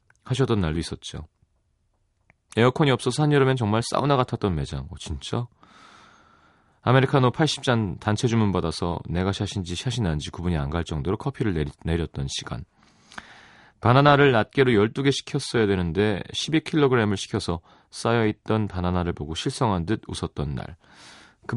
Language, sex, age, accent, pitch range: Korean, male, 30-49, native, 90-125 Hz